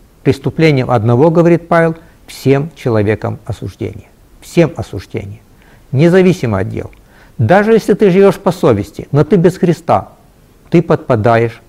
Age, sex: 60-79, male